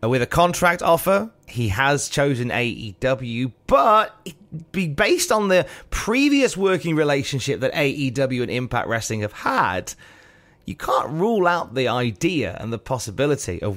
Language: English